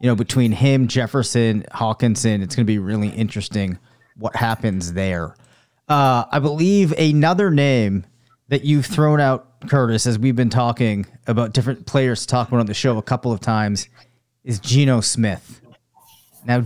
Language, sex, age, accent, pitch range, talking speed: English, male, 30-49, American, 120-145 Hz, 160 wpm